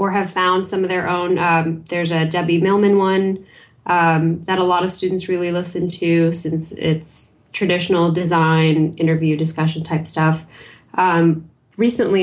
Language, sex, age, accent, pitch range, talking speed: English, female, 10-29, American, 160-185 Hz, 155 wpm